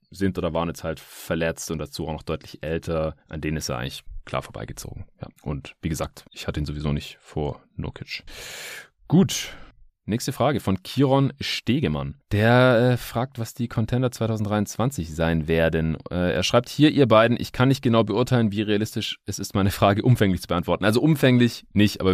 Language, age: German, 30-49